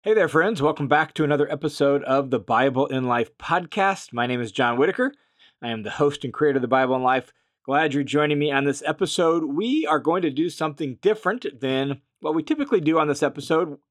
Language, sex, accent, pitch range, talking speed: English, male, American, 135-200 Hz, 225 wpm